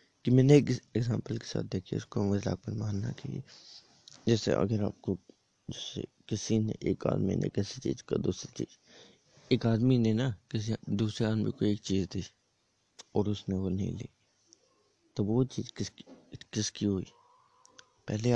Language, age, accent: Hindi, 20-39, native